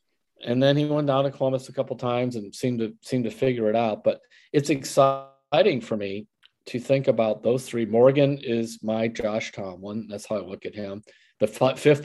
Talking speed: 210 wpm